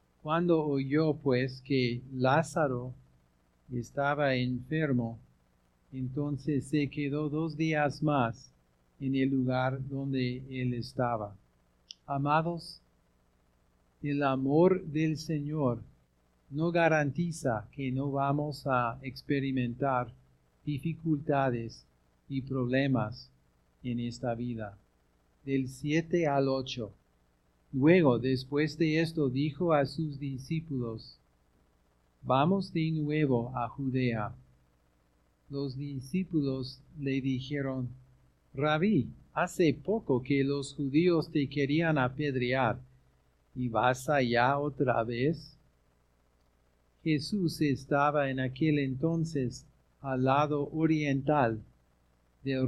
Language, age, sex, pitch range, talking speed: Spanish, 50-69, male, 110-150 Hz, 90 wpm